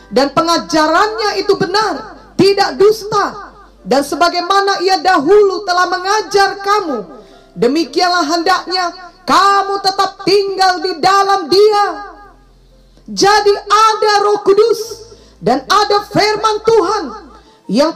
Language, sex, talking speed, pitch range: English, female, 100 wpm, 340-405 Hz